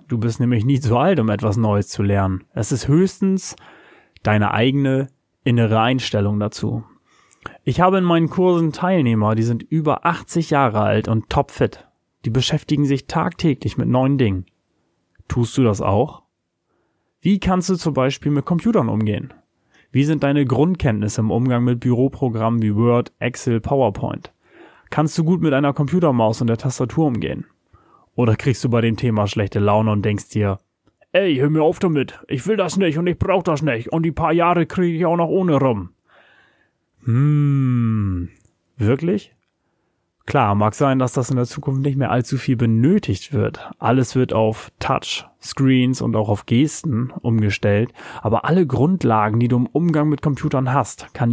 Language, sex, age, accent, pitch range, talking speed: German, male, 30-49, German, 110-150 Hz, 170 wpm